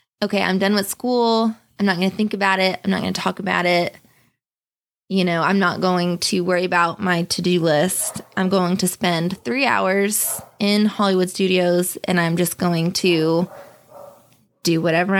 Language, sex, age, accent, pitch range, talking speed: English, female, 20-39, American, 180-215 Hz, 180 wpm